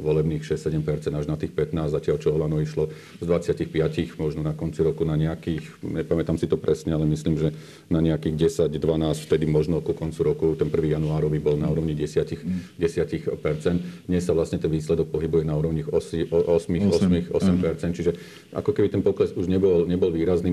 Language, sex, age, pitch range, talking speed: Slovak, male, 40-59, 80-85 Hz, 170 wpm